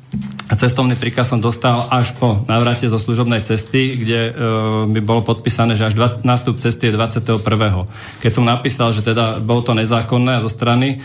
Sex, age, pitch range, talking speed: male, 40-59, 110-130 Hz, 170 wpm